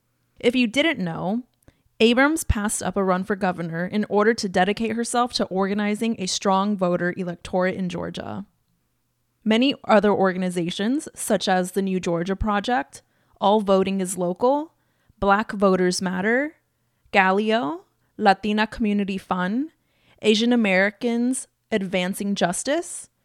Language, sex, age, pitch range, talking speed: English, female, 20-39, 185-235 Hz, 125 wpm